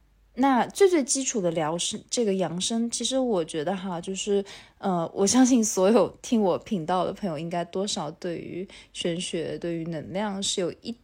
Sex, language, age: female, Chinese, 20-39